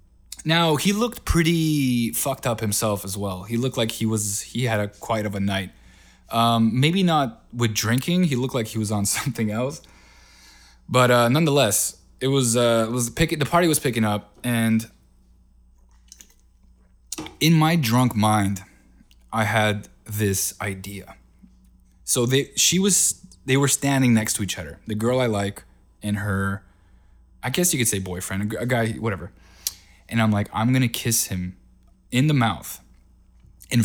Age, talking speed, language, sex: 20-39, 170 wpm, English, male